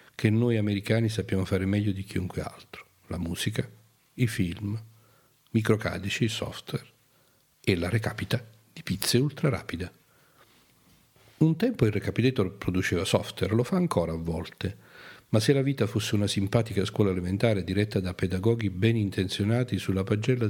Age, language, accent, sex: 40-59, Italian, native, male